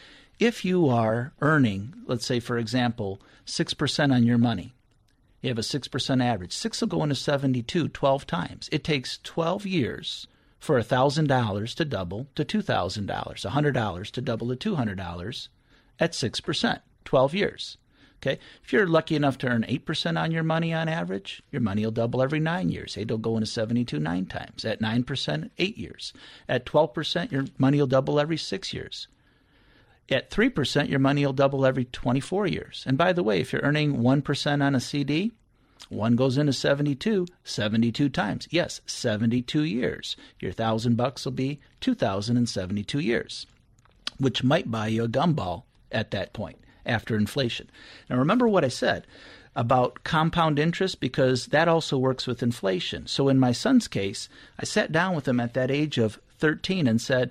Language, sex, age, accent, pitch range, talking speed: English, male, 50-69, American, 115-150 Hz, 170 wpm